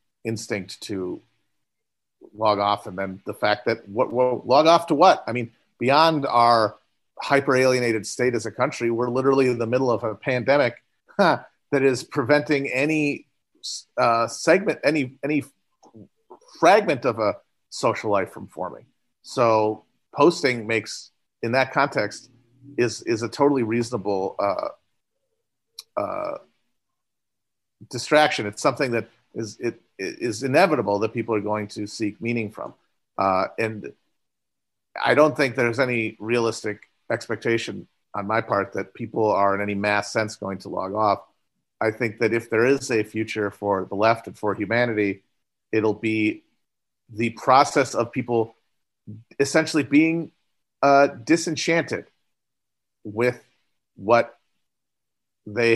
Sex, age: male, 40-59